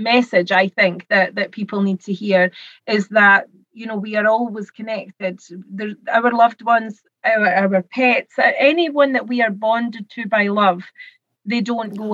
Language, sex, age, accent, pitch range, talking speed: English, female, 30-49, British, 200-235 Hz, 175 wpm